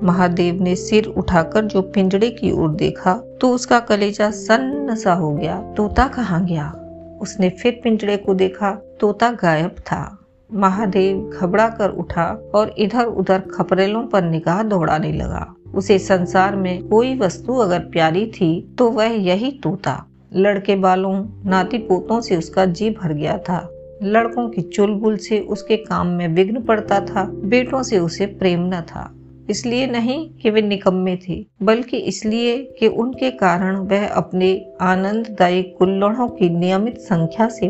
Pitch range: 180-225 Hz